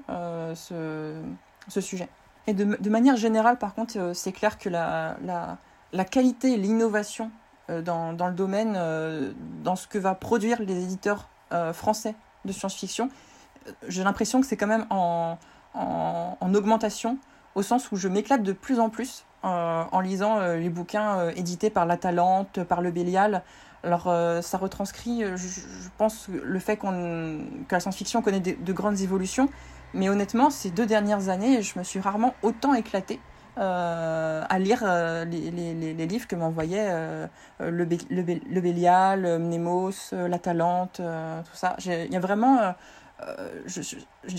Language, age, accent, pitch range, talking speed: French, 20-39, French, 175-225 Hz, 175 wpm